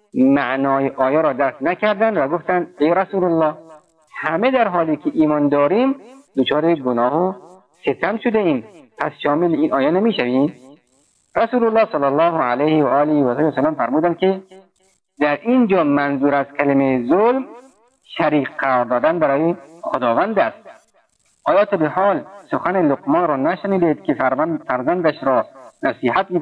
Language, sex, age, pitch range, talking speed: Persian, male, 50-69, 145-190 Hz, 140 wpm